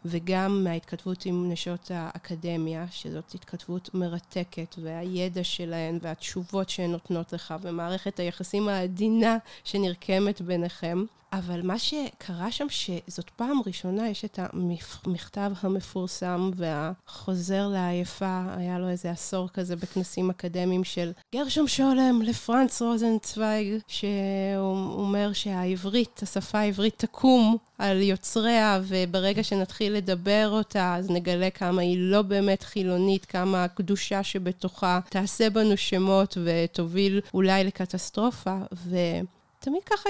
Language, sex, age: Hebrew, female, 30-49